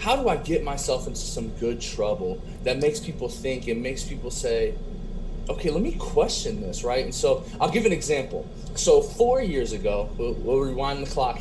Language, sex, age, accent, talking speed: English, male, 30-49, American, 200 wpm